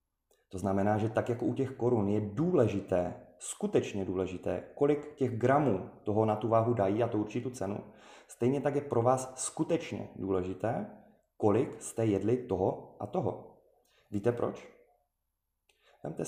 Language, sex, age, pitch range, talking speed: Czech, male, 30-49, 95-120 Hz, 145 wpm